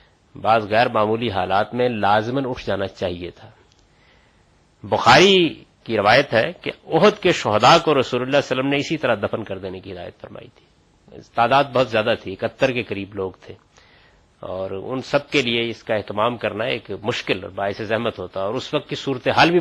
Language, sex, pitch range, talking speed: Urdu, male, 105-145 Hz, 200 wpm